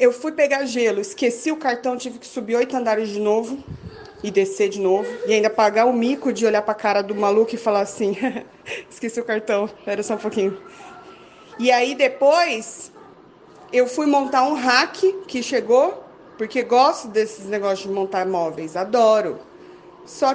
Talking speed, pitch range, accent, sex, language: 175 wpm, 215-295 Hz, Brazilian, female, Portuguese